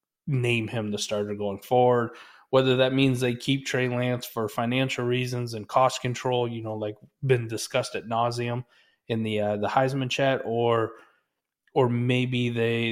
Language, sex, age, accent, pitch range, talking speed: English, male, 30-49, American, 115-135 Hz, 165 wpm